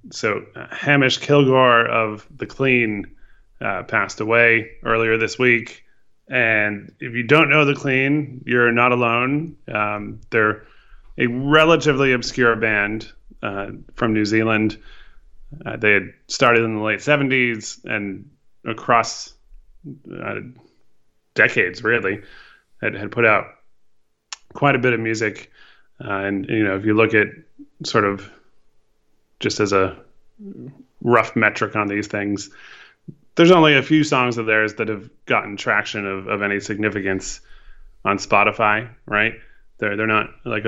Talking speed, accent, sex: 140 wpm, American, male